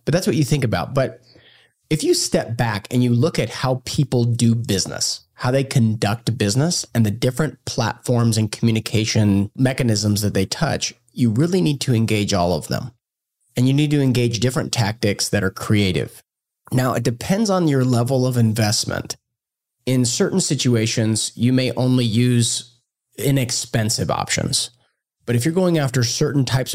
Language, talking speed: English, 170 wpm